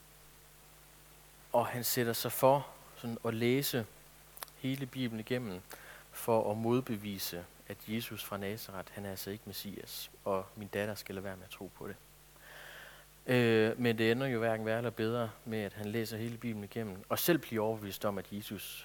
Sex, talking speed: male, 180 wpm